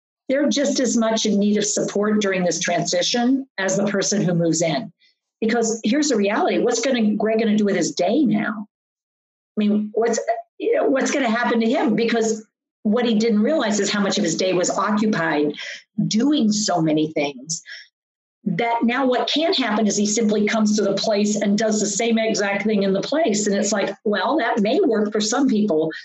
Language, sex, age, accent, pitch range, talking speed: English, female, 50-69, American, 195-235 Hz, 205 wpm